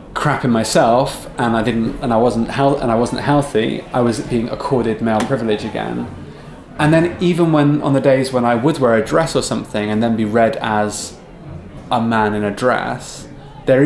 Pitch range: 110-140 Hz